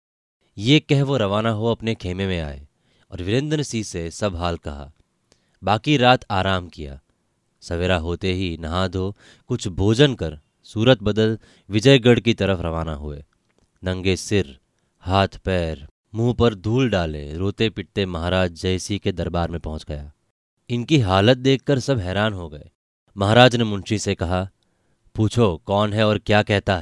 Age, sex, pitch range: 30-49, male, 90-115 Hz